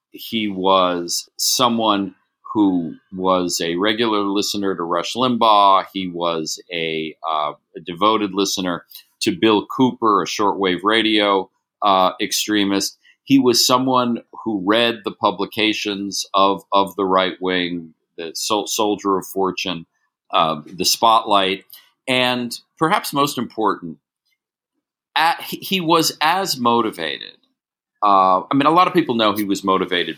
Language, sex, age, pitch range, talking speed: English, male, 40-59, 90-115 Hz, 125 wpm